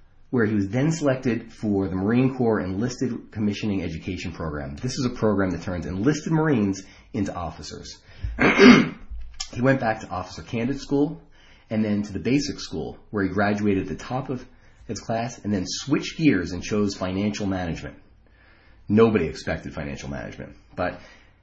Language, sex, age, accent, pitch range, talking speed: English, male, 30-49, American, 90-115 Hz, 160 wpm